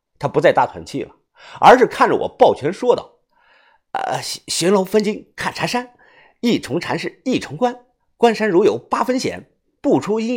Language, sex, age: Chinese, male, 50-69